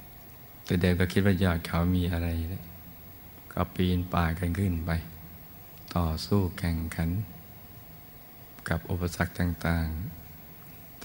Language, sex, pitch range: Thai, male, 85-95 Hz